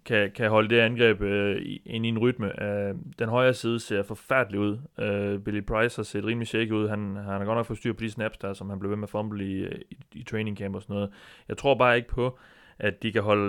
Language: Danish